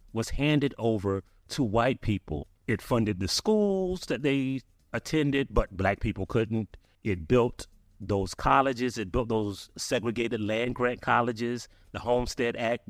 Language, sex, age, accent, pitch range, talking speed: English, male, 30-49, American, 95-120 Hz, 140 wpm